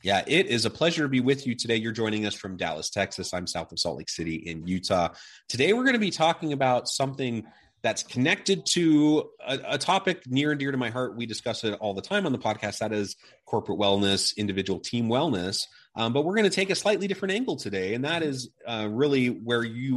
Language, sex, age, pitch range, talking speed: English, male, 30-49, 95-125 Hz, 235 wpm